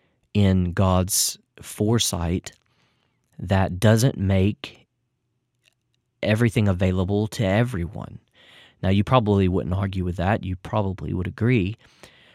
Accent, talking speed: American, 100 wpm